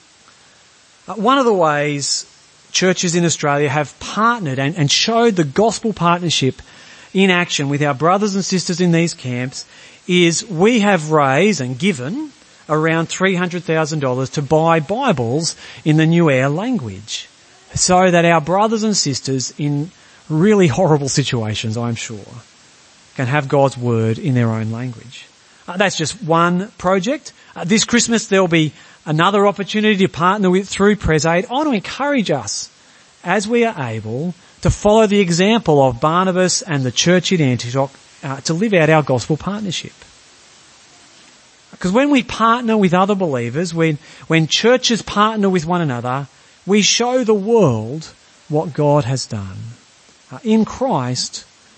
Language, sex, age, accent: English, male, 40-59, Australian